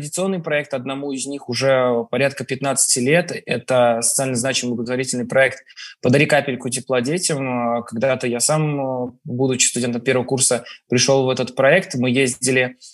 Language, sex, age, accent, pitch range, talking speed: Russian, male, 20-39, native, 125-140 Hz, 145 wpm